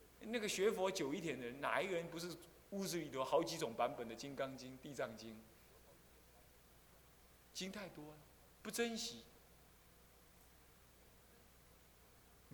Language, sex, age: Chinese, male, 30-49